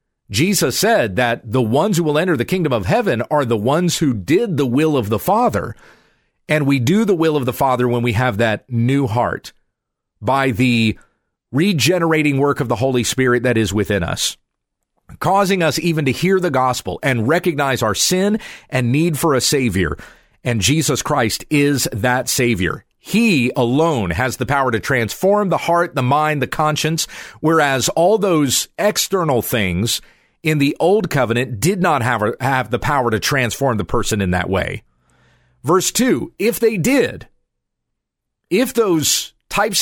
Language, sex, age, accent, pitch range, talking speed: English, male, 40-59, American, 125-180 Hz, 170 wpm